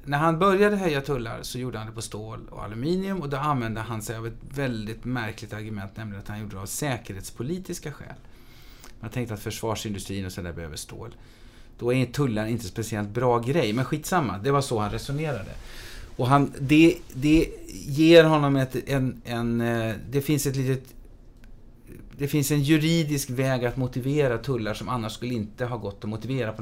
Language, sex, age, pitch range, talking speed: Swedish, male, 30-49, 110-135 Hz, 190 wpm